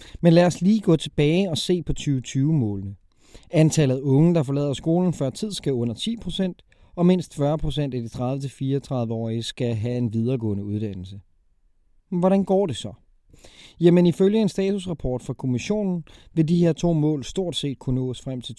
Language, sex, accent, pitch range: Danish, male, native, 125-165 Hz